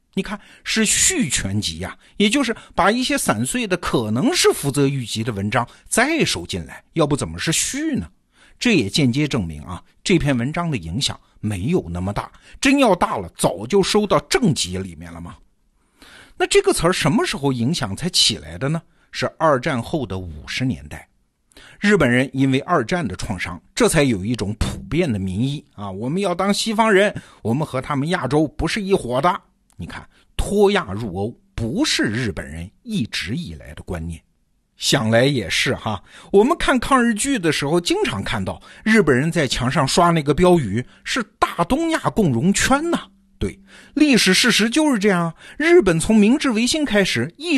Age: 50-69